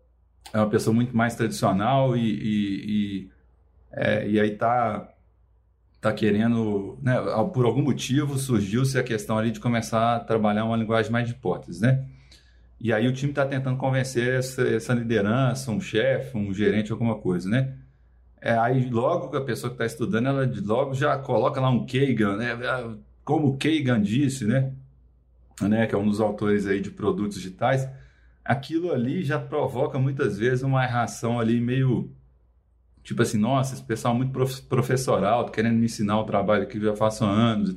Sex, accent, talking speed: male, Brazilian, 180 wpm